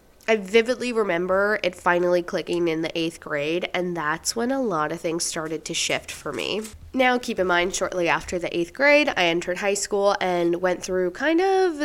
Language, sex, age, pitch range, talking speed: English, female, 20-39, 170-220 Hz, 205 wpm